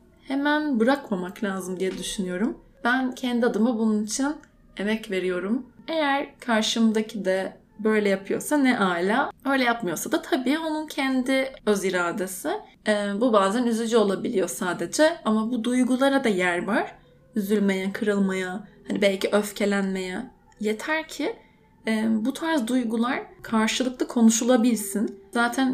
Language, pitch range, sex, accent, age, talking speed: Turkish, 200-260 Hz, female, native, 10-29, 125 wpm